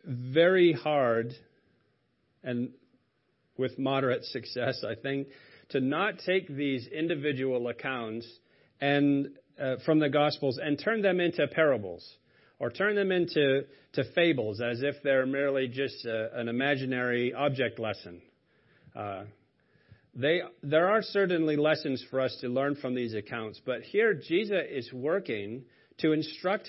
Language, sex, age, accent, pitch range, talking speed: English, male, 40-59, American, 130-175 Hz, 135 wpm